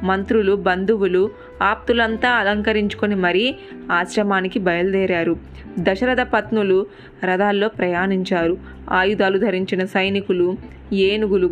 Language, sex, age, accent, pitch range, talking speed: Telugu, female, 20-39, native, 185-220 Hz, 80 wpm